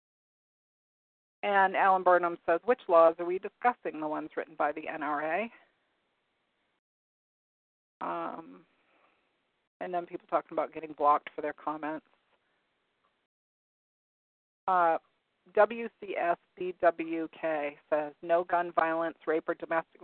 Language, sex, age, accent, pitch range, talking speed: English, female, 40-59, American, 155-175 Hz, 105 wpm